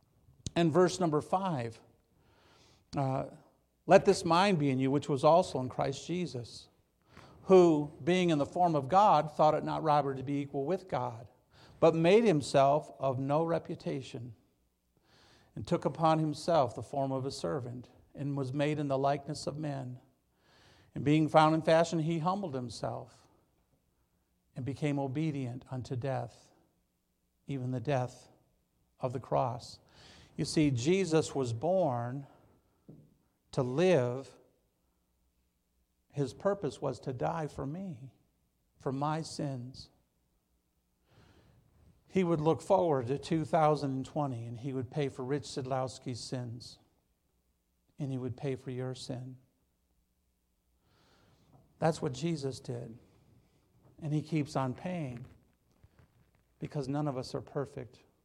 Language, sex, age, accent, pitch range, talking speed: English, male, 50-69, American, 125-155 Hz, 130 wpm